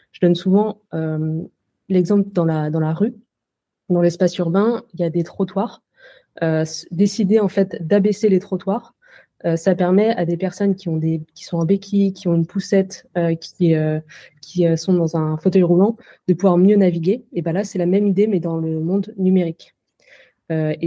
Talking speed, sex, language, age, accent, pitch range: 200 wpm, female, French, 20-39, French, 170-195 Hz